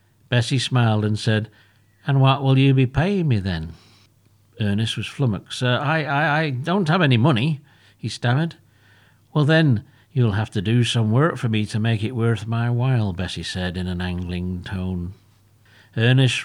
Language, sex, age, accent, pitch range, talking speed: English, male, 60-79, British, 105-130 Hz, 175 wpm